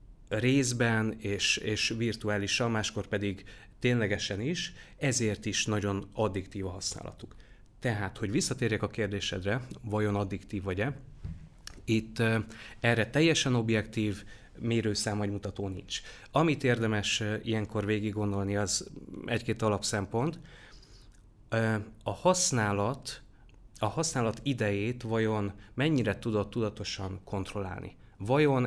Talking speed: 105 wpm